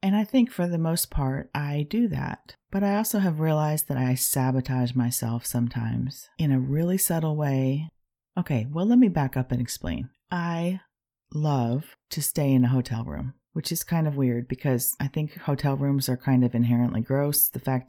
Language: English